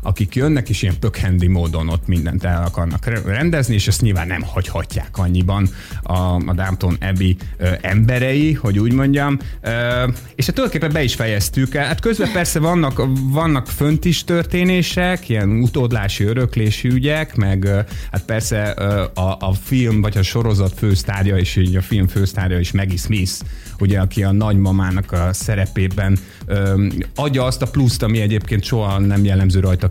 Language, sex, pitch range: Hungarian, male, 95-125 Hz